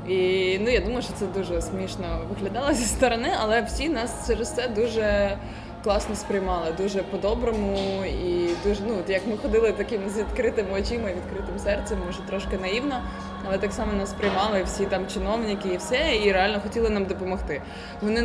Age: 20-39